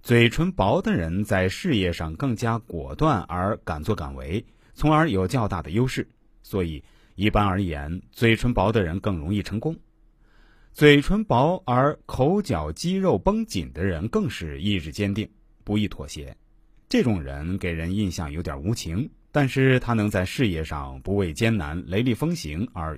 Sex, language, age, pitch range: male, Chinese, 30-49, 90-140 Hz